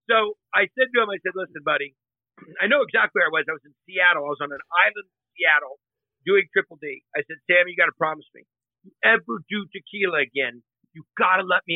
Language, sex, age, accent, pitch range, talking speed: English, male, 50-69, American, 160-265 Hz, 245 wpm